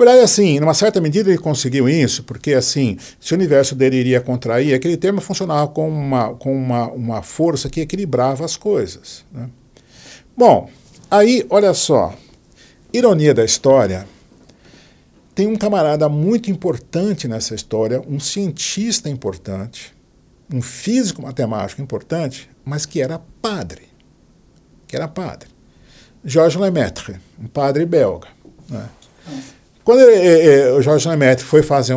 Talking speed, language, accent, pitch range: 130 wpm, Portuguese, Brazilian, 120-165 Hz